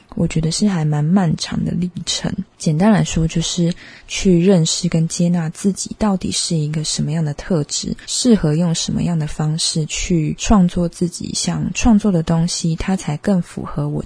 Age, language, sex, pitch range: 20-39, Chinese, female, 160-200 Hz